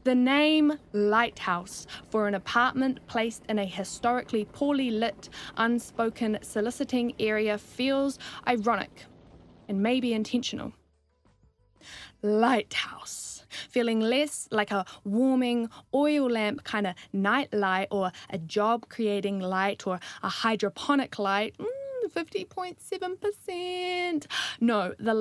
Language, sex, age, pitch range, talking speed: English, female, 10-29, 200-245 Hz, 105 wpm